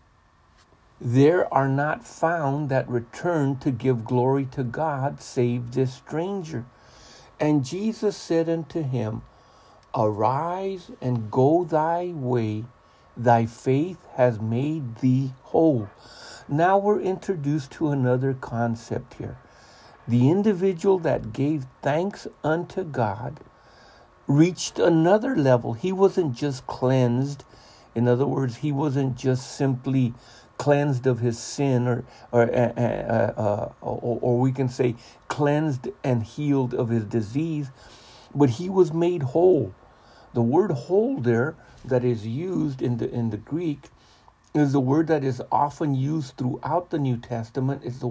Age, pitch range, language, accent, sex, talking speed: 60-79, 120-155 Hz, English, American, male, 135 wpm